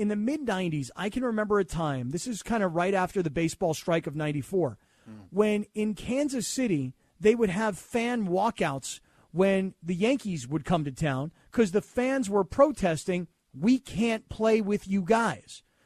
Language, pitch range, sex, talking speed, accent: English, 180-250 Hz, male, 175 wpm, American